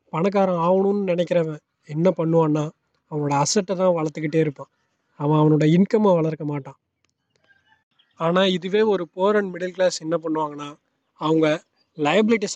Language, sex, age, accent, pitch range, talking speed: Tamil, male, 20-39, native, 155-175 Hz, 125 wpm